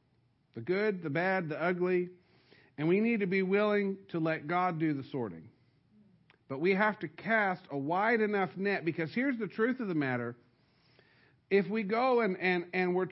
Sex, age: male, 50-69